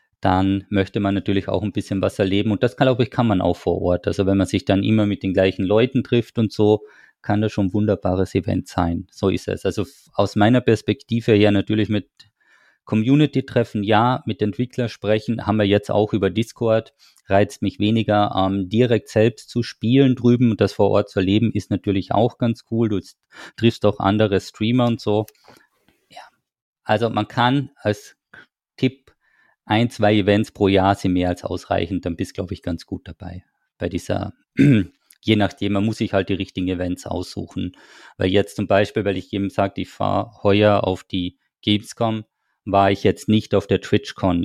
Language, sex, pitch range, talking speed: German, male, 95-110 Hz, 190 wpm